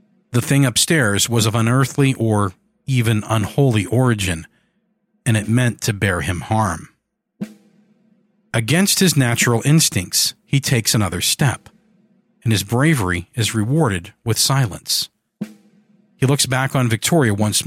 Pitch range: 105-165 Hz